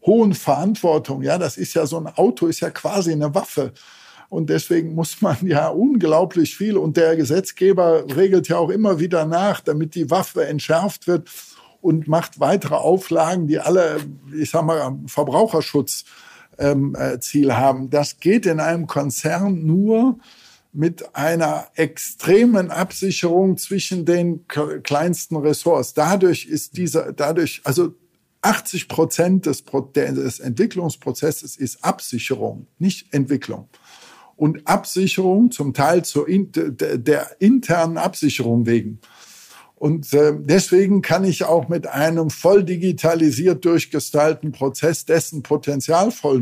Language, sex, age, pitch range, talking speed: German, male, 50-69, 145-180 Hz, 130 wpm